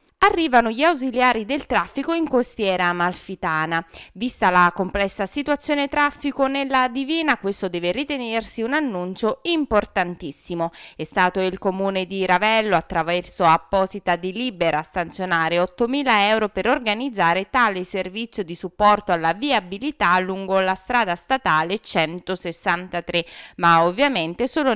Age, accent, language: 20-39, native, Italian